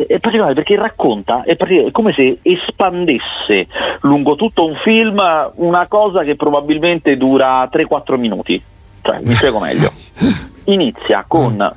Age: 40-59